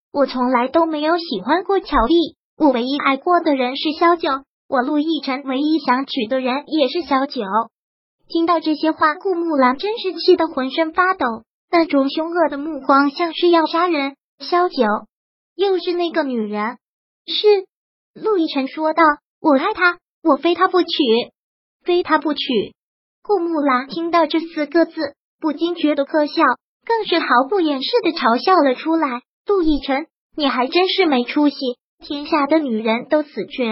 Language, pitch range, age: Chinese, 270-335 Hz, 20-39